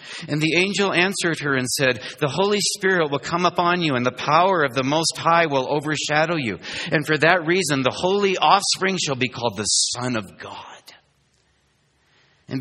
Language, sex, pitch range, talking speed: English, male, 90-150 Hz, 185 wpm